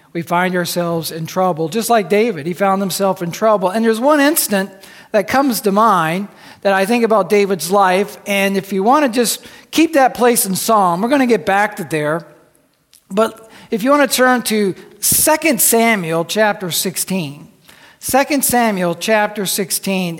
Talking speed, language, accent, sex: 180 wpm, English, American, male